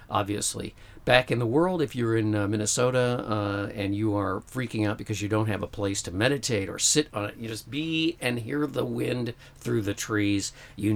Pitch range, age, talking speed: 105-125 Hz, 50-69, 215 wpm